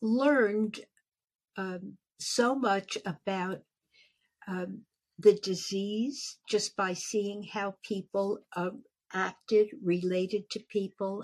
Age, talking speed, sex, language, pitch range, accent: 60-79, 95 wpm, female, English, 175-210 Hz, American